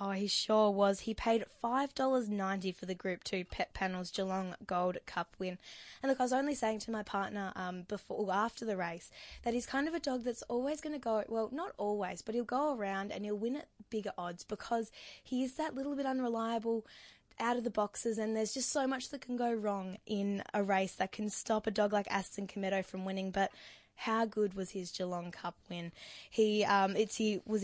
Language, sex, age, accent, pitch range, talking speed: English, female, 10-29, Australian, 190-225 Hz, 220 wpm